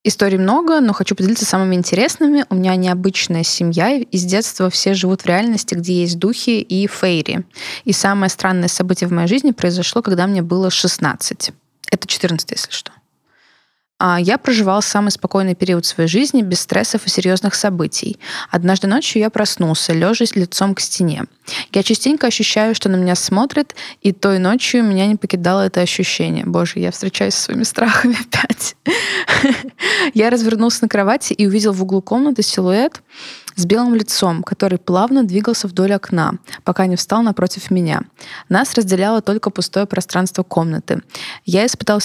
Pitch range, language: 180-220 Hz, Russian